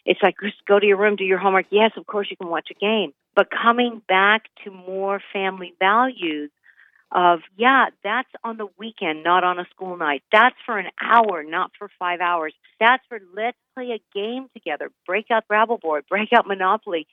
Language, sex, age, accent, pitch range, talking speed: English, female, 50-69, American, 180-230 Hz, 205 wpm